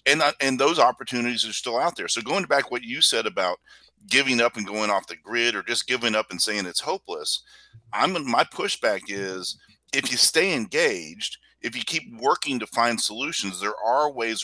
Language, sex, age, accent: English, male, 40-59, American